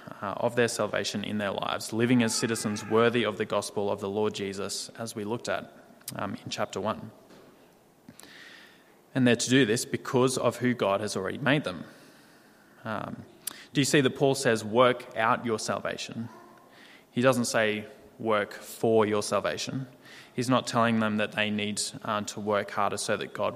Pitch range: 105-125 Hz